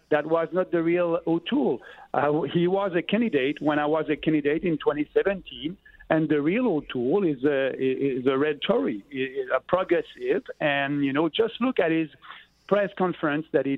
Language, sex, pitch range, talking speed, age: English, male, 145-185 Hz, 175 wpm, 50-69